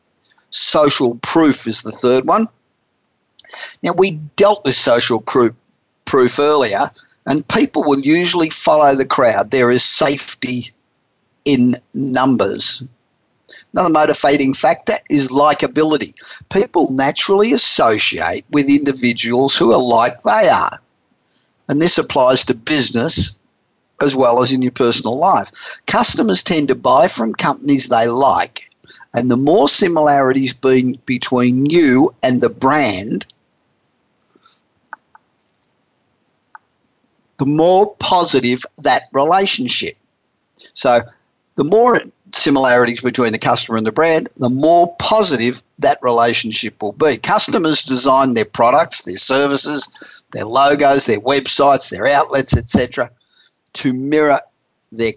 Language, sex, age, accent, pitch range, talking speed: English, male, 50-69, Australian, 125-150 Hz, 115 wpm